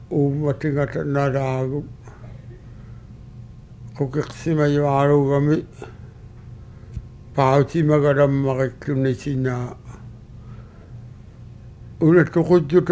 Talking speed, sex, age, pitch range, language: 45 wpm, male, 60-79, 115-140 Hz, English